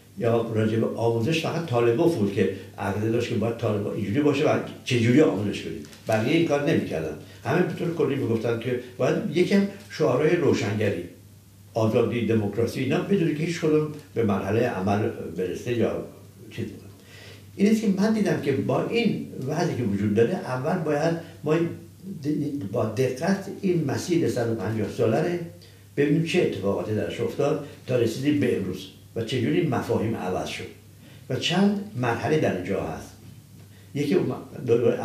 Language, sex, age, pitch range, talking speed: Persian, male, 60-79, 100-155 Hz, 145 wpm